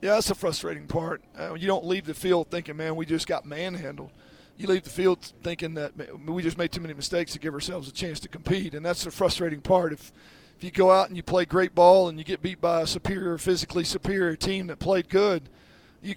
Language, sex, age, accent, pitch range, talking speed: English, male, 40-59, American, 155-180 Hz, 240 wpm